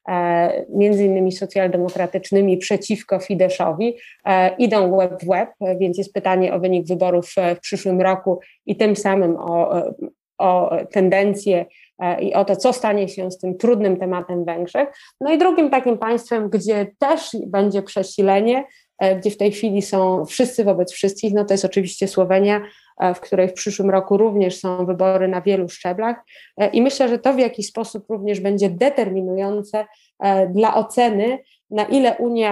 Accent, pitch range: native, 185-205 Hz